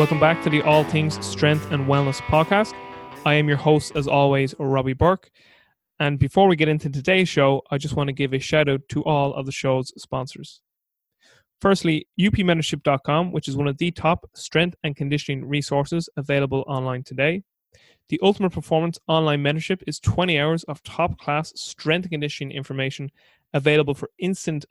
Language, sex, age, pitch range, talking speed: English, male, 20-39, 140-165 Hz, 175 wpm